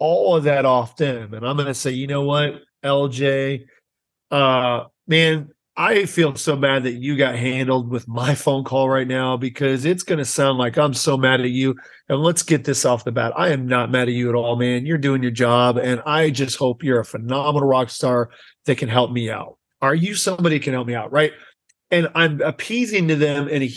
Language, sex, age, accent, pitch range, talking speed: English, male, 40-59, American, 125-155 Hz, 225 wpm